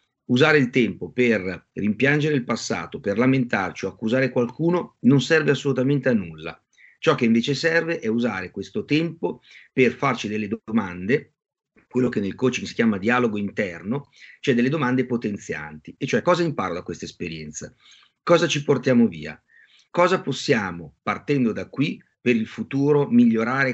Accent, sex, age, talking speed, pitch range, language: native, male, 40-59, 155 wpm, 105-150 Hz, Italian